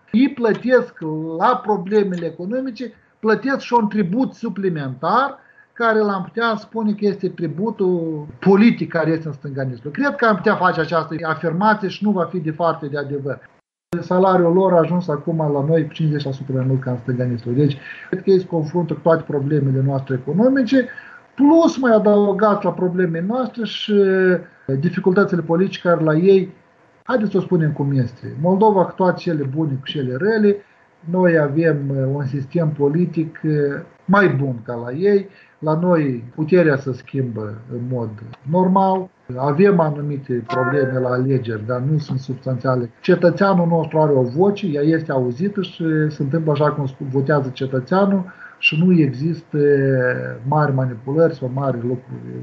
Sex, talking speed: male, 155 wpm